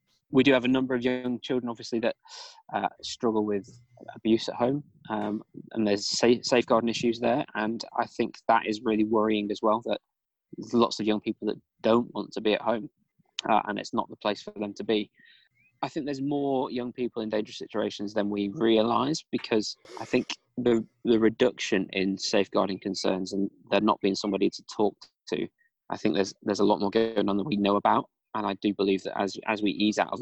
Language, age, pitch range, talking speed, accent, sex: English, 20-39, 105-120 Hz, 215 wpm, British, male